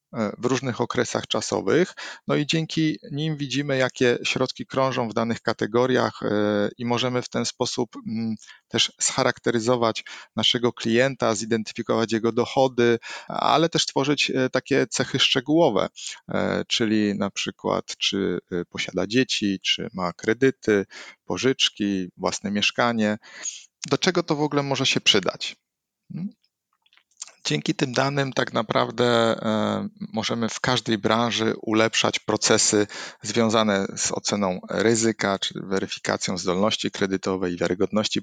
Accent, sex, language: native, male, Polish